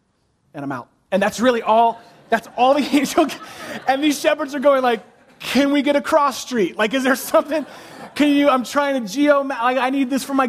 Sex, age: male, 30-49